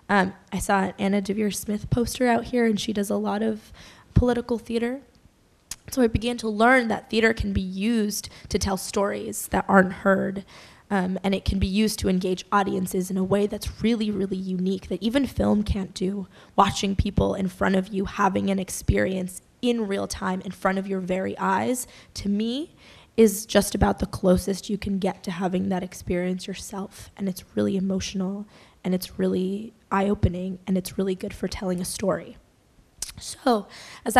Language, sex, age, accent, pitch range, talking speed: English, female, 10-29, American, 190-220 Hz, 185 wpm